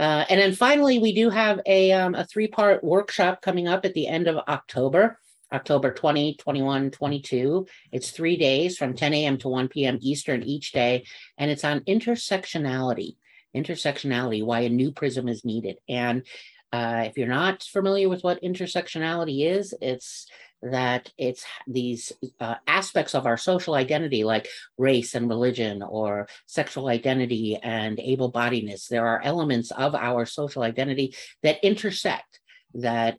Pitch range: 120-165 Hz